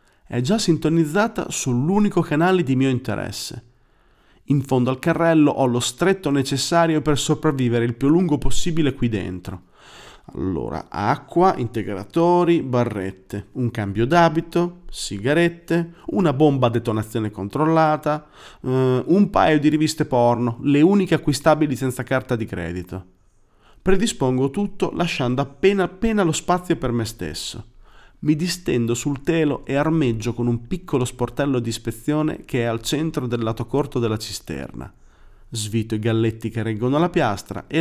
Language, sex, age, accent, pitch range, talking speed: Italian, male, 40-59, native, 115-160 Hz, 140 wpm